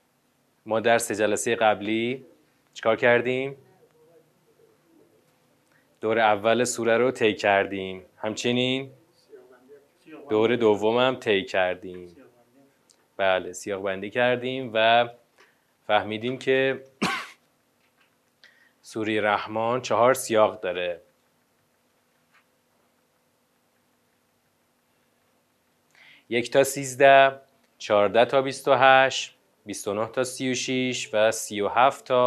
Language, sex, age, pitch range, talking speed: Persian, male, 30-49, 110-135 Hz, 85 wpm